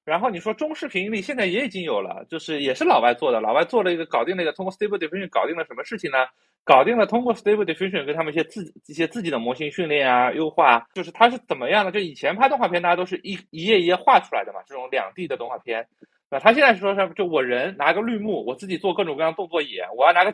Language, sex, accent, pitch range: Chinese, male, native, 160-230 Hz